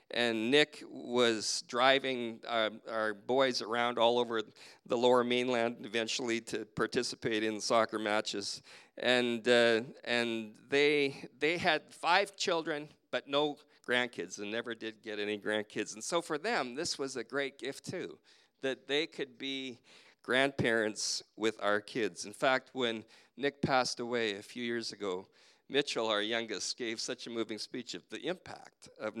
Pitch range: 110-135 Hz